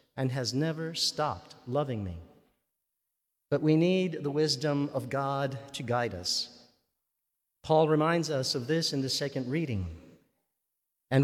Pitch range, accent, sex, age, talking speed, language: 135-175 Hz, American, male, 50-69, 140 wpm, English